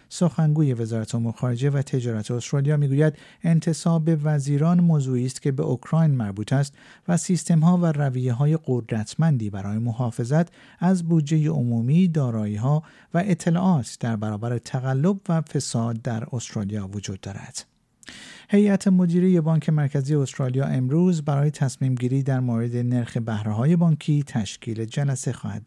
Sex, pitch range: male, 120-165 Hz